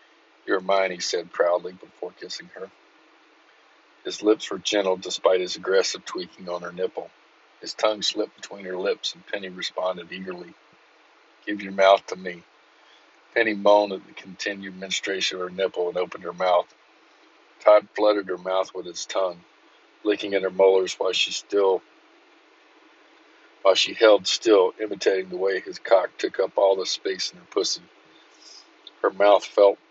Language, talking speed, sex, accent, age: English, 160 wpm, male, American, 50-69